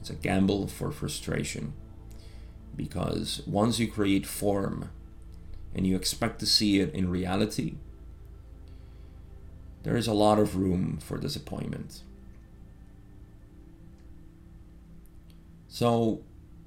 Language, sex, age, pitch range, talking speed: English, male, 30-49, 85-105 Hz, 95 wpm